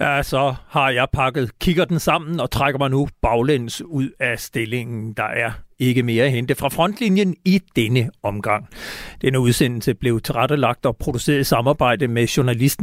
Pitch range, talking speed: 125-165 Hz, 170 wpm